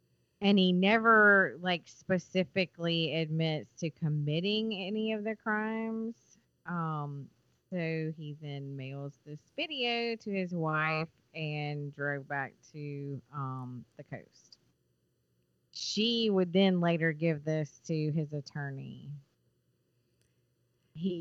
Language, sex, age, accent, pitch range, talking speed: English, female, 30-49, American, 140-165 Hz, 110 wpm